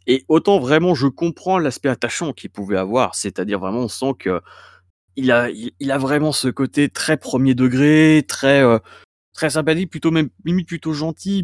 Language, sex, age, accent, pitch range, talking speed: French, male, 20-39, French, 115-145 Hz, 185 wpm